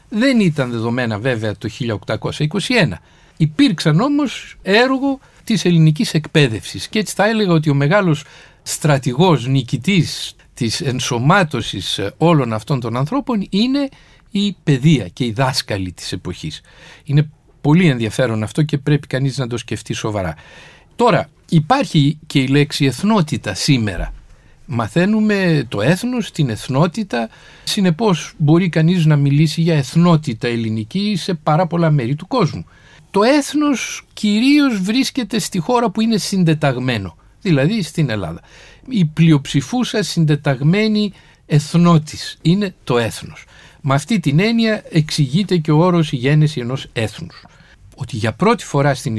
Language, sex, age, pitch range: Greek, male, 50-69, 135-200 Hz